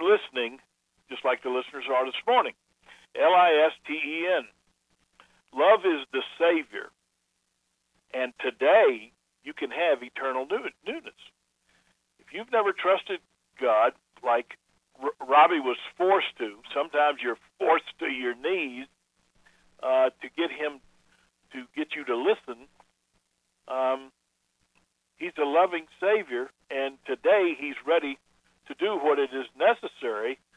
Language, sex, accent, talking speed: English, male, American, 120 wpm